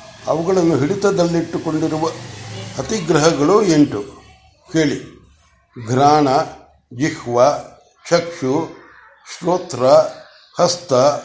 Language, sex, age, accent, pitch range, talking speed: Kannada, male, 60-79, native, 145-180 Hz, 55 wpm